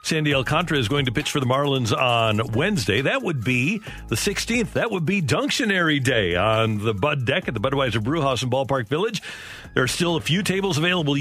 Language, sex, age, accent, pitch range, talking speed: English, male, 50-69, American, 125-165 Hz, 215 wpm